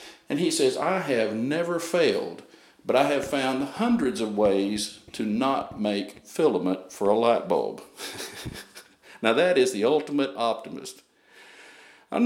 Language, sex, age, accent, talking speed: English, male, 50-69, American, 140 wpm